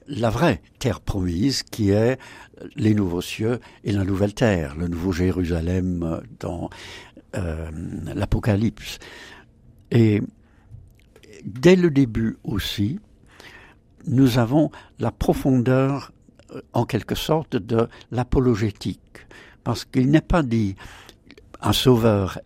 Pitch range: 95-125 Hz